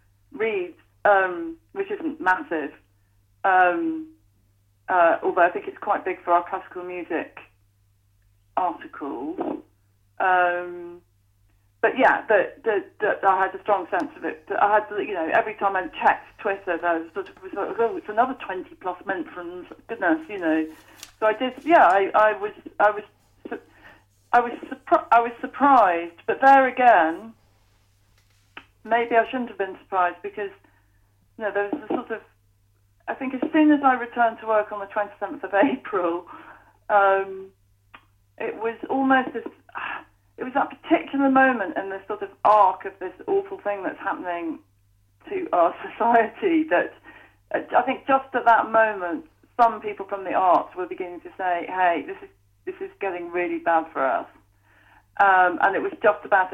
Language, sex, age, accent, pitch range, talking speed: English, female, 40-59, British, 165-265 Hz, 165 wpm